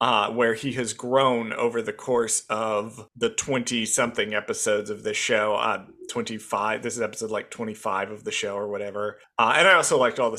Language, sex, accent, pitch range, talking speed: English, male, American, 120-180 Hz, 190 wpm